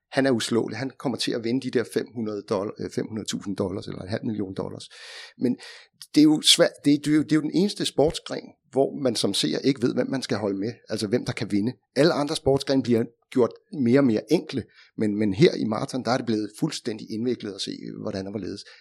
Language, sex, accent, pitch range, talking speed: Danish, male, native, 105-135 Hz, 235 wpm